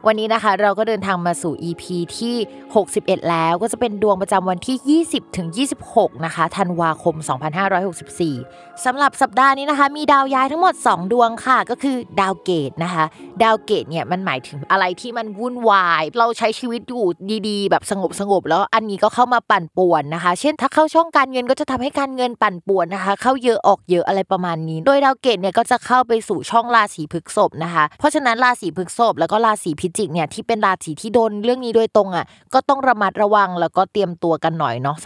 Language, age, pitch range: Thai, 20-39, 170-240 Hz